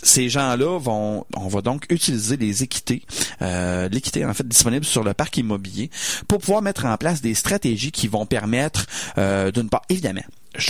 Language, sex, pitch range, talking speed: French, male, 105-130 Hz, 185 wpm